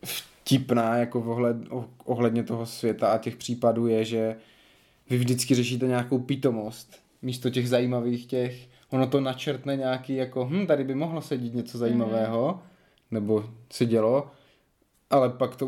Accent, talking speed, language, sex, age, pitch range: native, 145 wpm, Czech, male, 20-39, 120-130 Hz